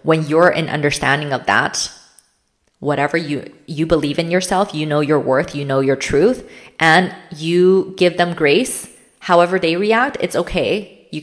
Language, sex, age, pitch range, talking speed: English, female, 20-39, 135-180 Hz, 165 wpm